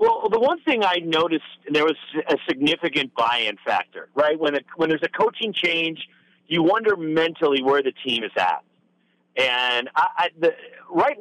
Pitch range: 150-205 Hz